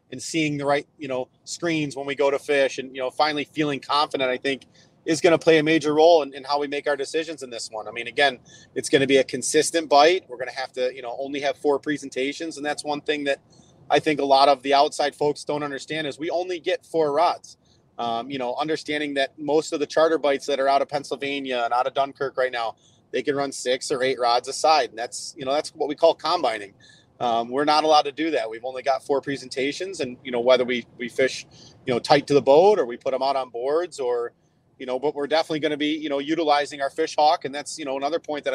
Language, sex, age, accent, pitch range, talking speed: English, male, 30-49, American, 130-155 Hz, 265 wpm